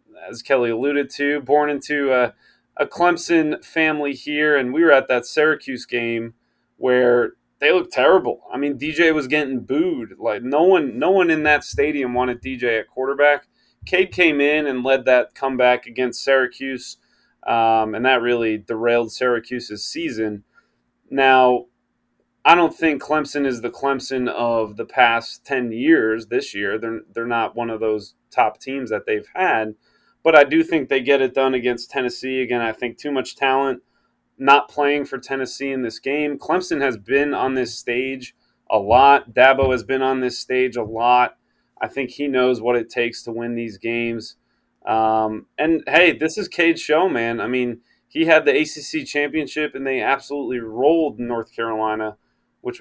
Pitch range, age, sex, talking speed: 120-145 Hz, 30-49, male, 175 wpm